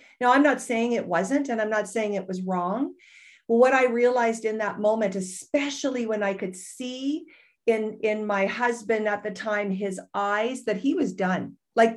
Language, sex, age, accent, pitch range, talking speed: English, female, 50-69, American, 215-280 Hz, 190 wpm